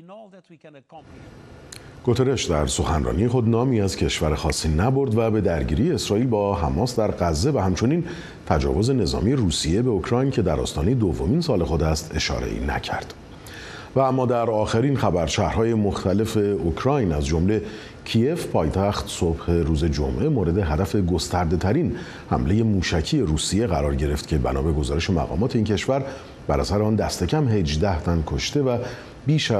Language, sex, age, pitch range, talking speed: Persian, male, 50-69, 80-115 Hz, 145 wpm